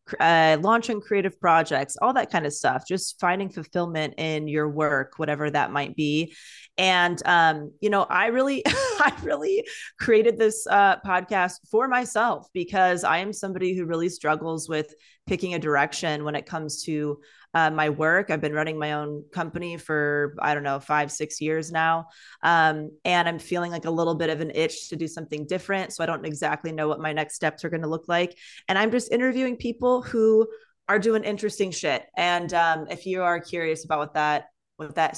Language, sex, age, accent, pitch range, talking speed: English, female, 20-39, American, 155-190 Hz, 195 wpm